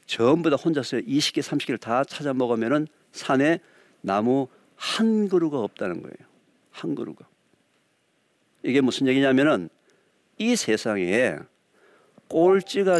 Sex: male